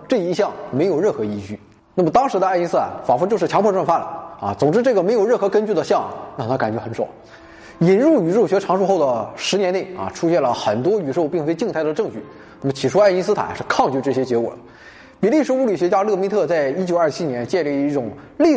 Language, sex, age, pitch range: Chinese, male, 20-39, 130-200 Hz